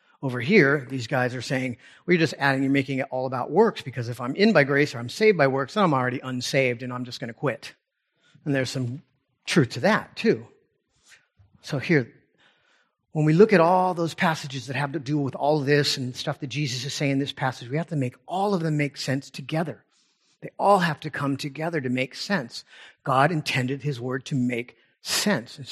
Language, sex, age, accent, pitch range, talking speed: English, male, 40-59, American, 130-160 Hz, 220 wpm